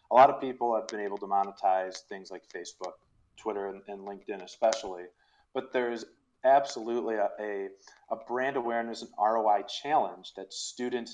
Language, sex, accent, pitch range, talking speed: English, male, American, 100-120 Hz, 155 wpm